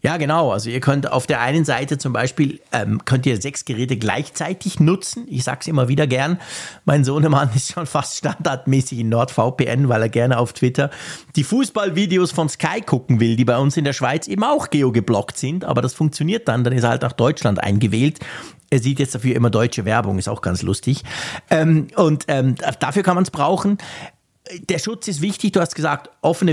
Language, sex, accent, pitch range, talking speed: German, male, Austrian, 125-165 Hz, 205 wpm